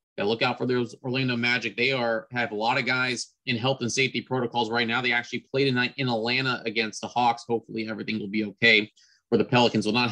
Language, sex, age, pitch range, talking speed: English, male, 30-49, 110-130 Hz, 235 wpm